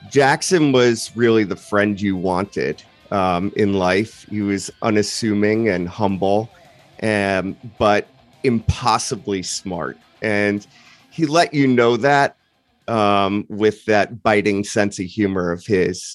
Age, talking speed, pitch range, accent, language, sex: 30-49, 125 wpm, 95-110 Hz, American, English, male